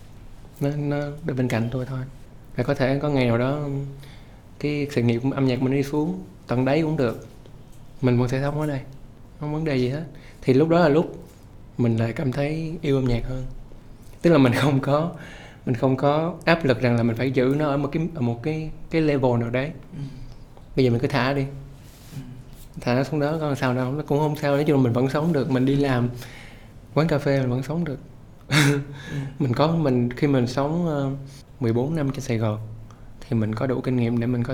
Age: 20-39